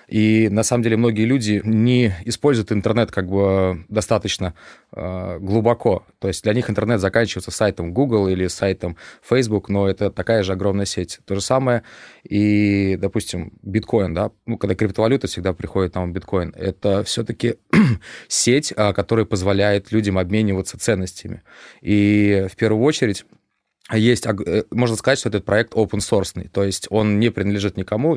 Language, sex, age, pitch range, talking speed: Russian, male, 20-39, 95-110 Hz, 145 wpm